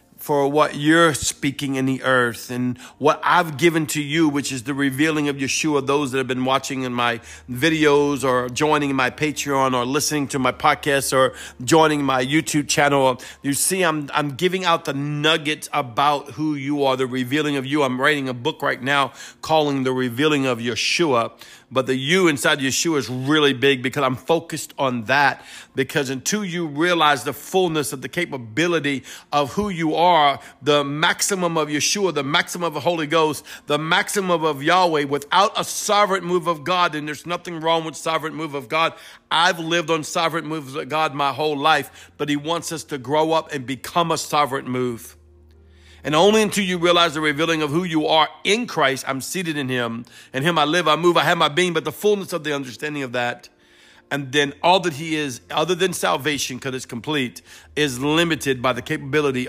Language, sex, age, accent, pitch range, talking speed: English, male, 50-69, American, 135-160 Hz, 200 wpm